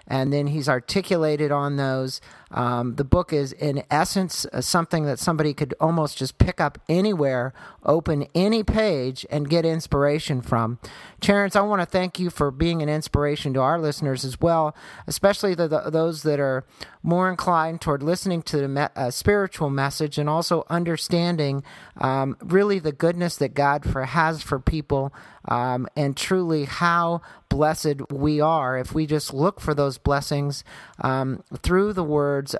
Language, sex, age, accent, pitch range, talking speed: English, male, 50-69, American, 140-170 Hz, 160 wpm